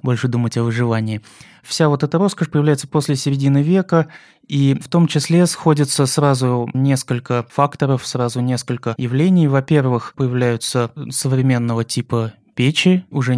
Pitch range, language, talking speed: 120-145 Hz, Russian, 130 wpm